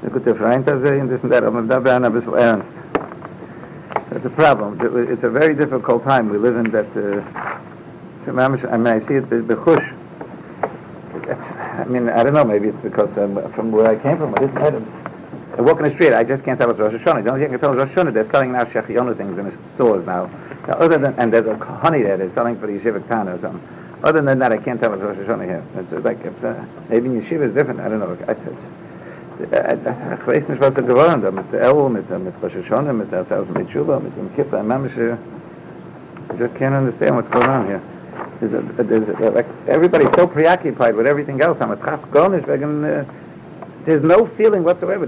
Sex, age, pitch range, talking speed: male, 60-79, 115-155 Hz, 160 wpm